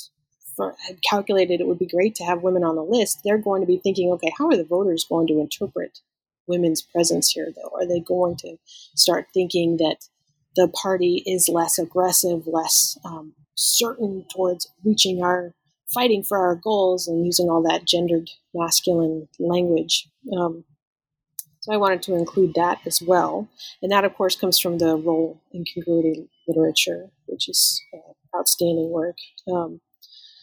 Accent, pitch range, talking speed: American, 165-210 Hz, 170 wpm